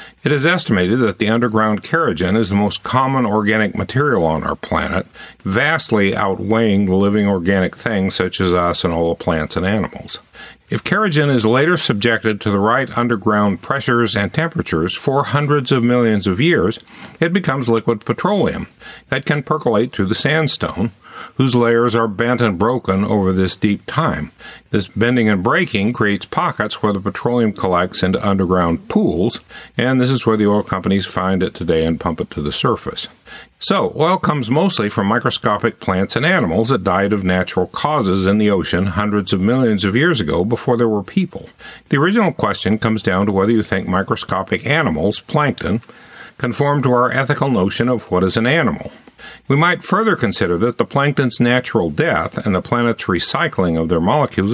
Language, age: English, 50-69